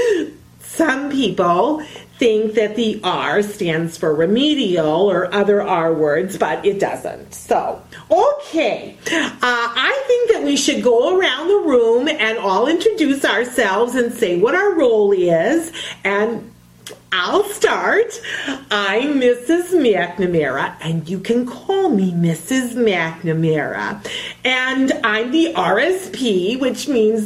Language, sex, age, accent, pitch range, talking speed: English, female, 40-59, American, 210-330 Hz, 125 wpm